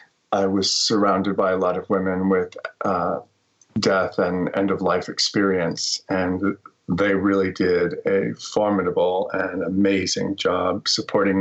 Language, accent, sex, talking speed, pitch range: English, American, male, 135 wpm, 95-105 Hz